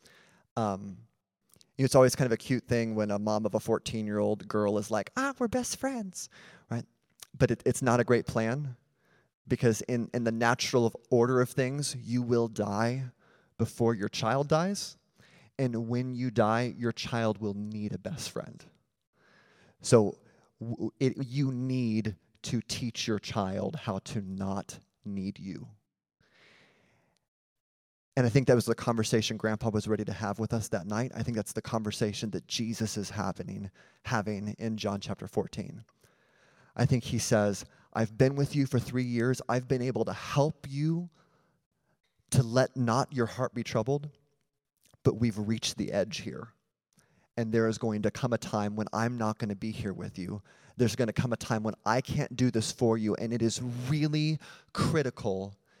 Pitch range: 110-130 Hz